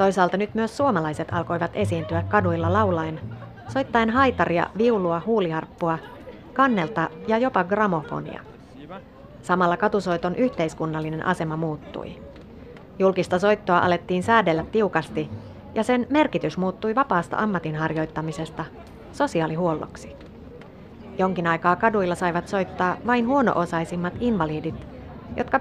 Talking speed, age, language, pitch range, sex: 100 wpm, 30-49, Finnish, 155-210 Hz, female